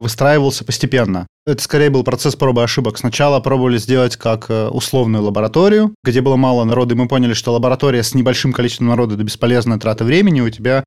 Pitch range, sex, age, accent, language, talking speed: 120-150 Hz, male, 20-39, native, Russian, 190 wpm